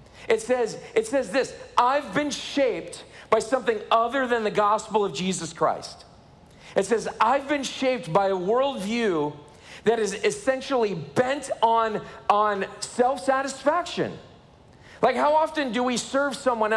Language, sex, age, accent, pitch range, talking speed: English, male, 40-59, American, 190-265 Hz, 140 wpm